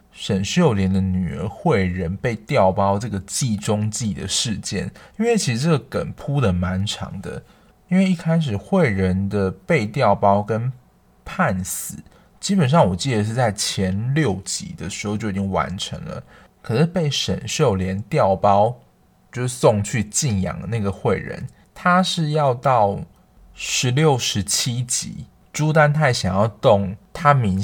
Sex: male